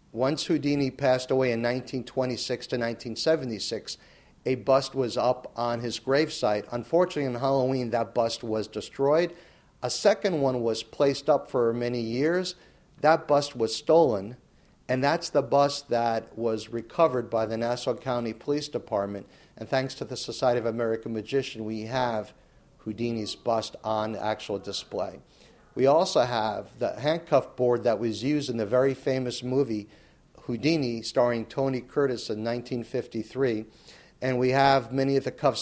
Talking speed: 150 wpm